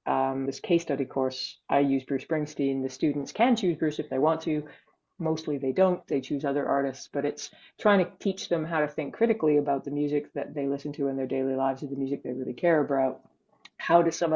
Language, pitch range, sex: English, 135-160 Hz, female